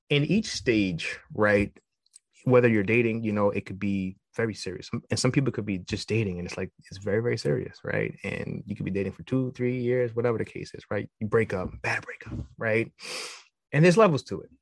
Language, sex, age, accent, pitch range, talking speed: English, male, 20-39, American, 100-125 Hz, 220 wpm